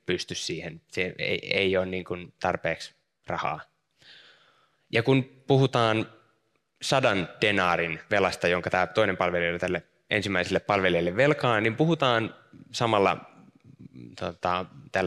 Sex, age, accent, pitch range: male, 20-39, native, 90-125 Hz